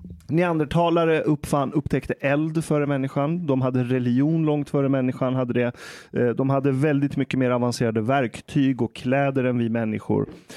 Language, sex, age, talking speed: Swedish, male, 30-49, 140 wpm